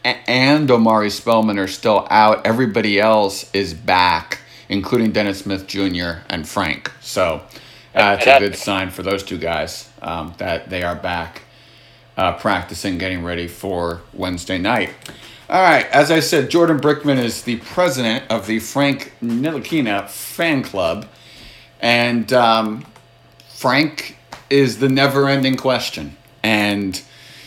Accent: American